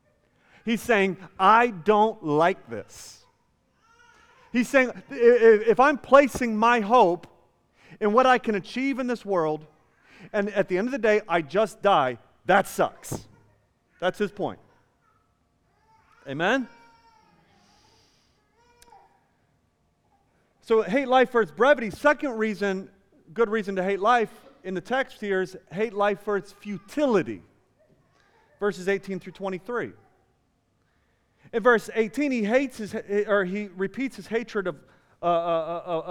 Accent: American